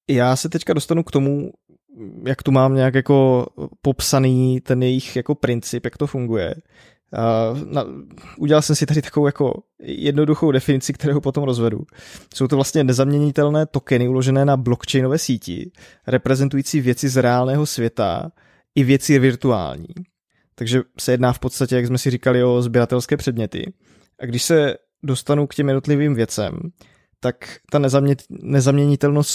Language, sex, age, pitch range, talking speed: Czech, male, 20-39, 120-140 Hz, 135 wpm